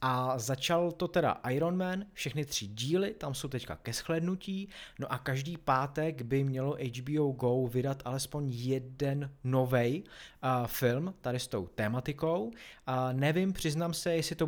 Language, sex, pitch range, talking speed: Czech, male, 120-160 Hz, 155 wpm